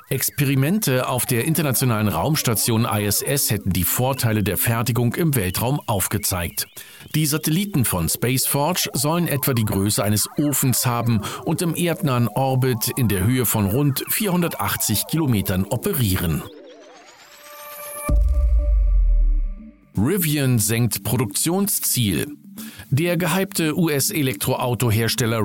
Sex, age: male, 50-69